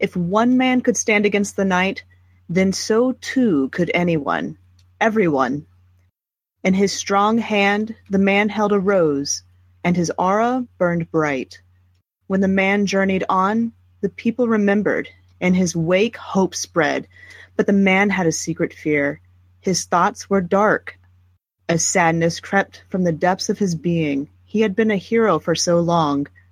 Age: 30-49